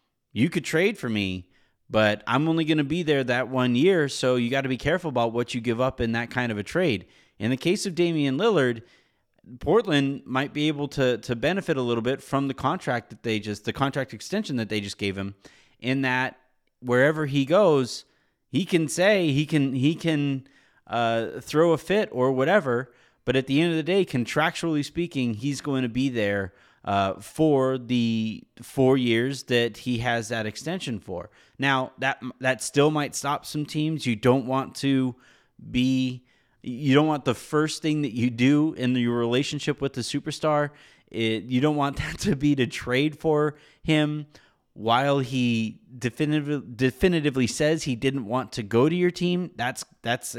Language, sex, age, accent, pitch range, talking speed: English, male, 30-49, American, 120-150 Hz, 190 wpm